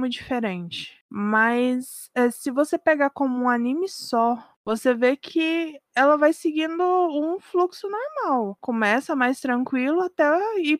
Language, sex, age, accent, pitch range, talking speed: Portuguese, female, 20-39, Brazilian, 210-270 Hz, 130 wpm